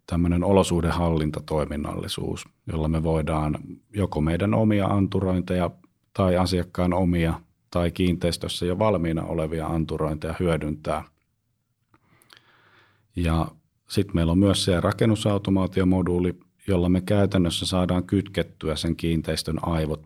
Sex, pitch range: male, 80-100 Hz